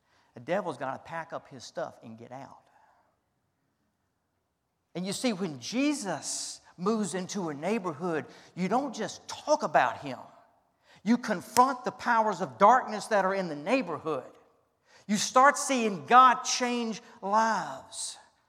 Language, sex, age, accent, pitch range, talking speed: English, male, 50-69, American, 160-200 Hz, 140 wpm